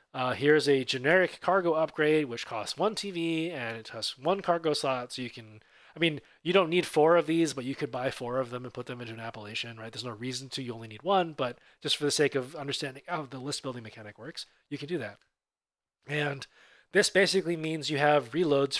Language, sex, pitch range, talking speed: English, male, 130-170 Hz, 235 wpm